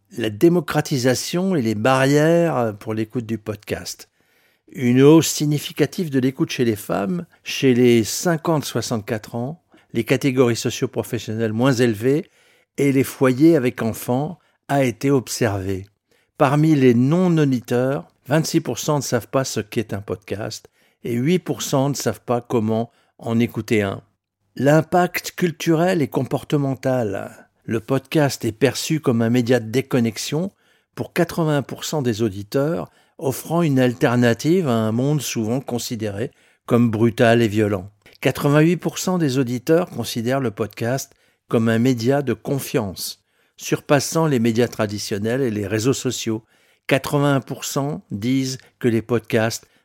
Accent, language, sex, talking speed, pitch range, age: French, French, male, 130 wpm, 115-150 Hz, 50-69